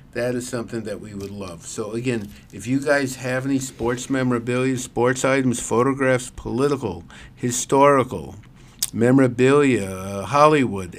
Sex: male